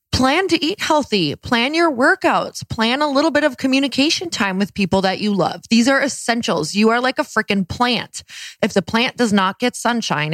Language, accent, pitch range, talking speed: English, American, 180-250 Hz, 205 wpm